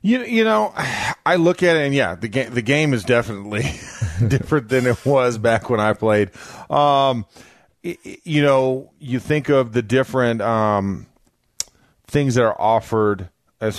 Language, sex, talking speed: English, male, 165 wpm